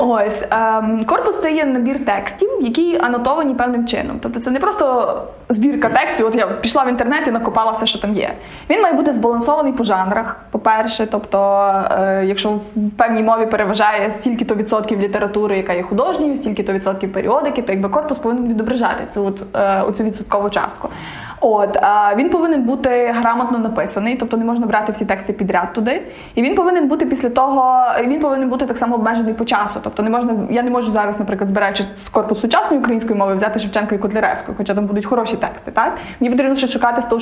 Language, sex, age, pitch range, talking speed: Ukrainian, female, 20-39, 215-265 Hz, 190 wpm